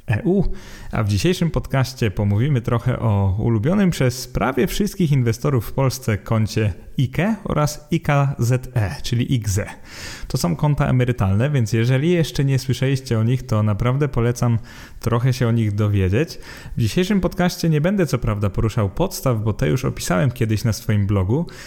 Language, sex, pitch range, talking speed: Polish, male, 110-130 Hz, 160 wpm